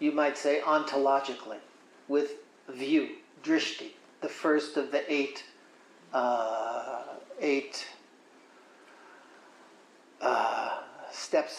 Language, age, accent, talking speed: English, 60-79, American, 85 wpm